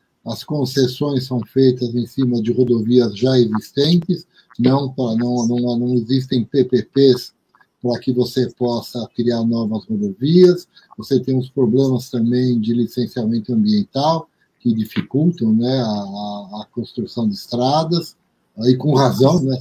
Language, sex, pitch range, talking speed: Portuguese, male, 120-150 Hz, 135 wpm